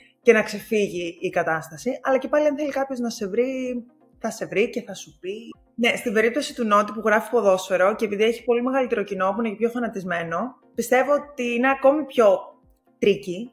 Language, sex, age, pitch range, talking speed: Greek, female, 20-39, 200-295 Hz, 205 wpm